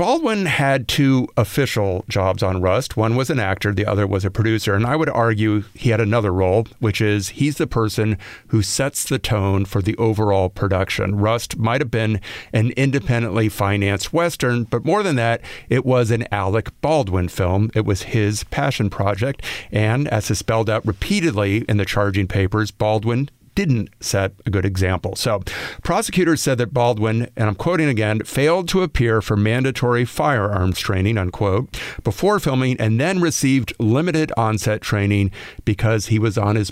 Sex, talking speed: male, 175 wpm